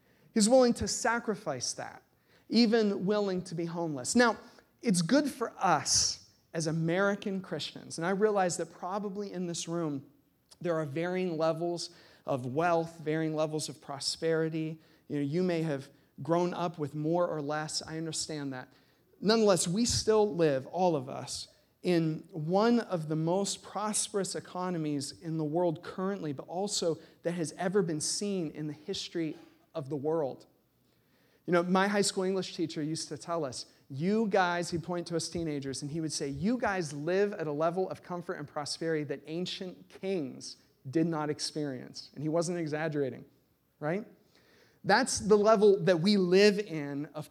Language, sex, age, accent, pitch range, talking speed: English, male, 40-59, American, 155-195 Hz, 170 wpm